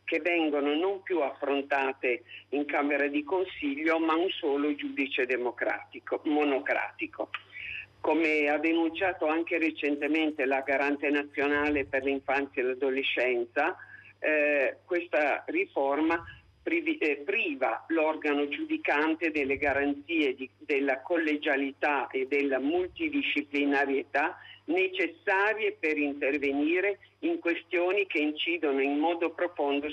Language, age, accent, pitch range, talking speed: Italian, 50-69, native, 140-180 Hz, 105 wpm